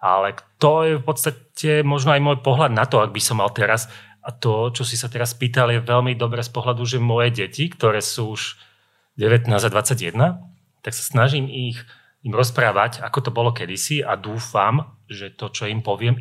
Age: 30-49